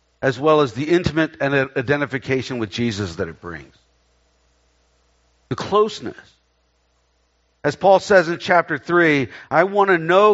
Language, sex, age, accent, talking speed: English, male, 50-69, American, 135 wpm